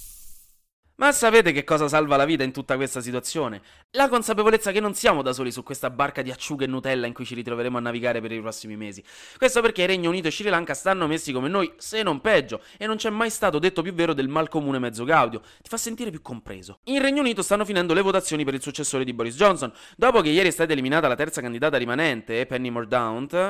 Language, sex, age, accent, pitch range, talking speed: Italian, male, 20-39, native, 125-195 Hz, 230 wpm